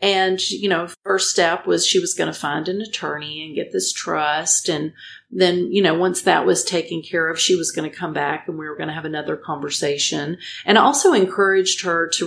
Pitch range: 165-195 Hz